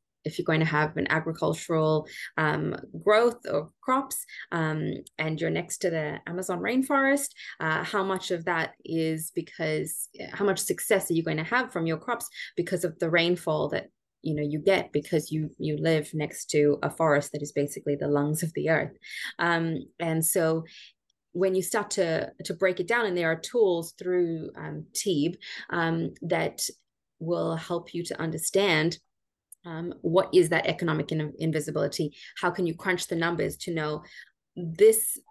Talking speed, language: 175 wpm, English